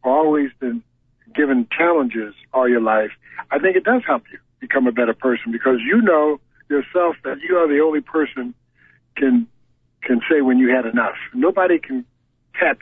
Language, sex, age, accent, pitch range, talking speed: English, male, 60-79, American, 130-195 Hz, 175 wpm